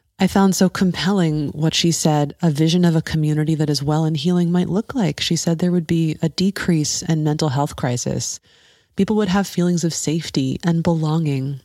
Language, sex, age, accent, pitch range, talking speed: English, female, 30-49, American, 145-185 Hz, 200 wpm